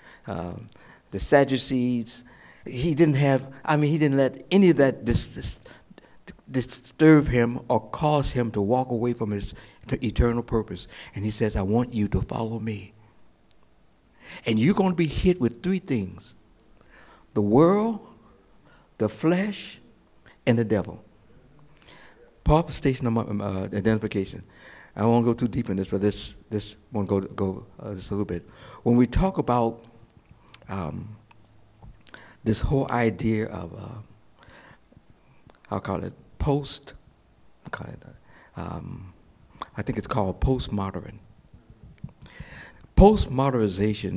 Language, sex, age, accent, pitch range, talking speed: English, male, 60-79, American, 100-130 Hz, 135 wpm